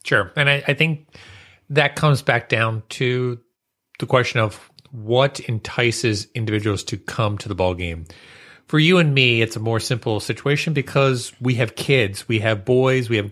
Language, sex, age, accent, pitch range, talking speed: English, male, 30-49, American, 100-125 Hz, 180 wpm